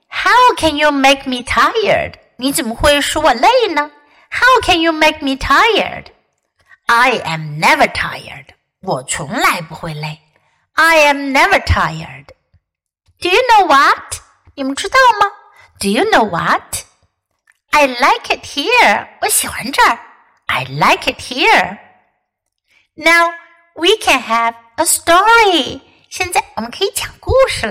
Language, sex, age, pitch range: Chinese, female, 60-79, 250-370 Hz